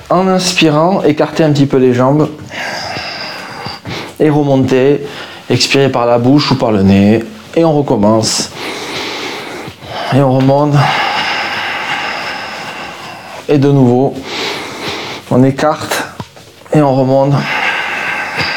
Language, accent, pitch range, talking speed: French, French, 140-190 Hz, 105 wpm